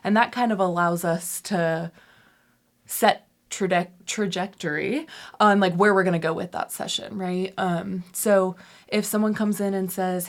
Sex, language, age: female, English, 20-39